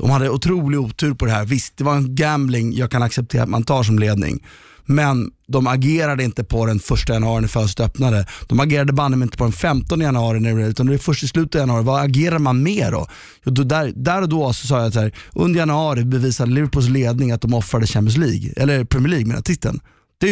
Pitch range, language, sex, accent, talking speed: 115-145 Hz, Swedish, male, native, 240 wpm